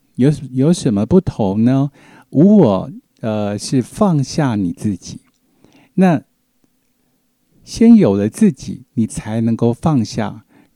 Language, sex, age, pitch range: Chinese, male, 60-79, 105-145 Hz